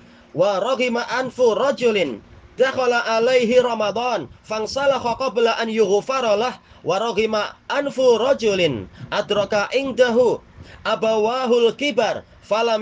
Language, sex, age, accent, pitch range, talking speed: Indonesian, male, 30-49, native, 205-250 Hz, 95 wpm